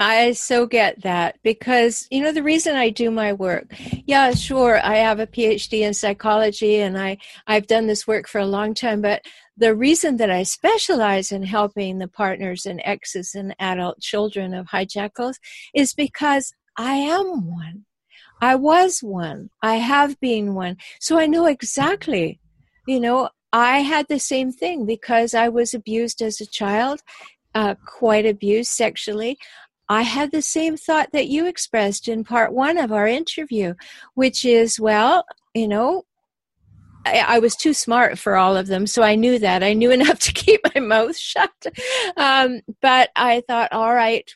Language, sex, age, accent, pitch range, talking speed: English, female, 50-69, American, 210-275 Hz, 175 wpm